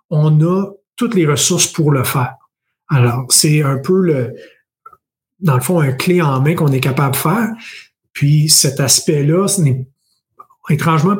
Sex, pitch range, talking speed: male, 145-180 Hz, 165 wpm